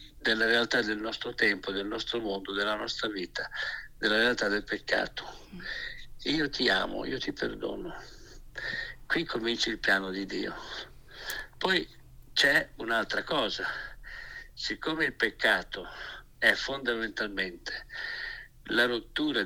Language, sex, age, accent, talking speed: Italian, male, 60-79, native, 115 wpm